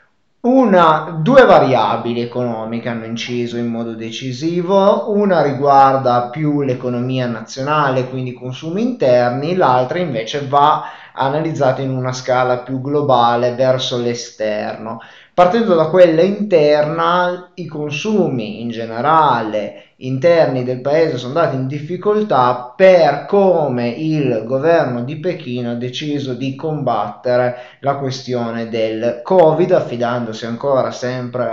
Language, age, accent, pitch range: Italian, 20-39, native, 120-150 Hz